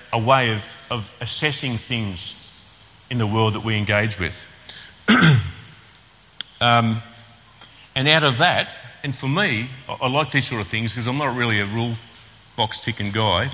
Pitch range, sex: 105-135 Hz, male